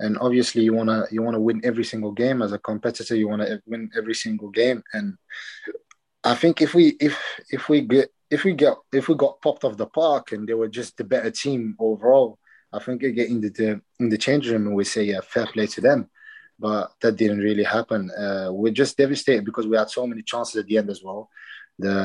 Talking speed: 230 wpm